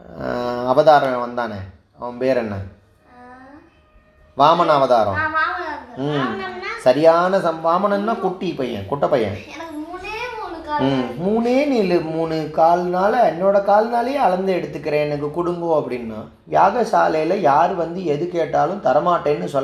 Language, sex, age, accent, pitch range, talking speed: Tamil, male, 30-49, native, 140-205 Hz, 90 wpm